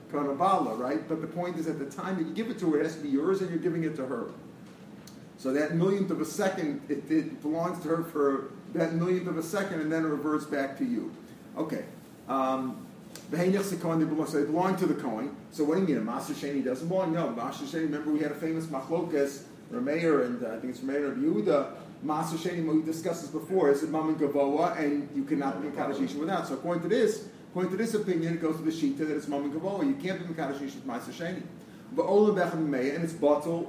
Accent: American